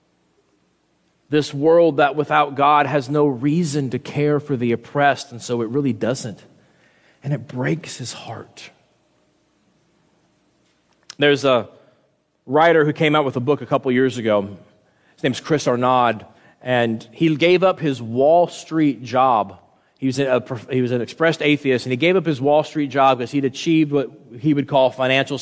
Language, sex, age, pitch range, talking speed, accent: English, male, 30-49, 135-165 Hz, 165 wpm, American